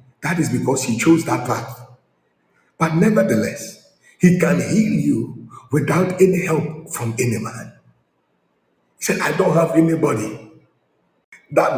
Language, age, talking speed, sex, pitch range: English, 50-69, 130 wpm, male, 140-180 Hz